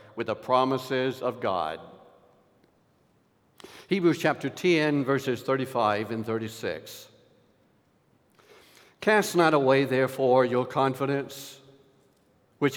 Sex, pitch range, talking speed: male, 130-175 Hz, 90 wpm